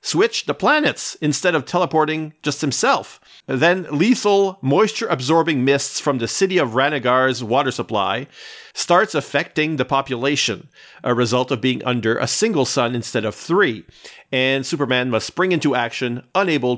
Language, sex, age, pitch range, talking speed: English, male, 40-59, 125-155 Hz, 145 wpm